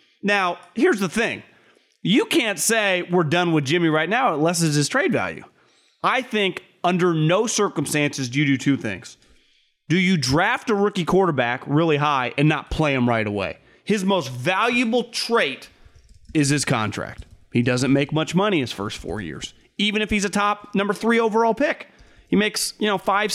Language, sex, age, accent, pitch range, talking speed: English, male, 30-49, American, 155-215 Hz, 185 wpm